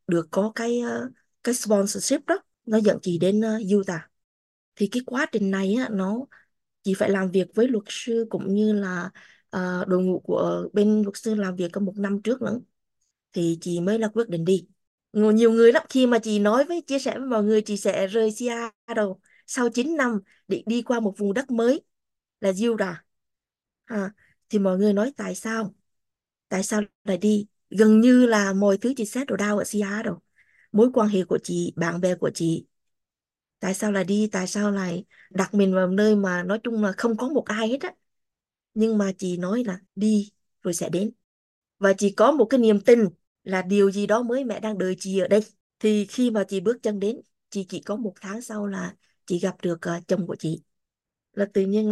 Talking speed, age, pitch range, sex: 210 wpm, 20-39, 190-225 Hz, female